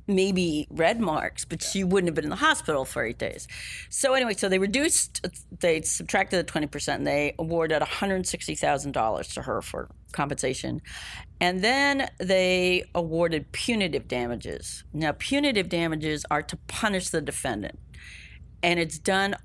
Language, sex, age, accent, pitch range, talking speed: English, female, 40-59, American, 145-185 Hz, 150 wpm